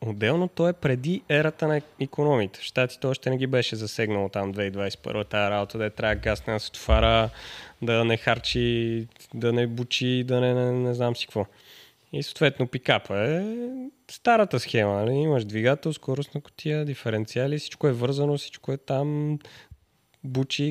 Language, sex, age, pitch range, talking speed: Bulgarian, male, 20-39, 110-150 Hz, 165 wpm